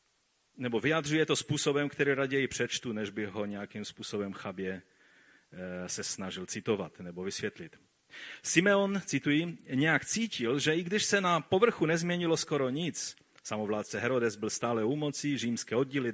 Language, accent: Czech, native